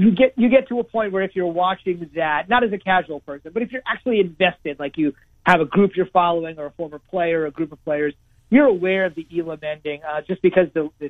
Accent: American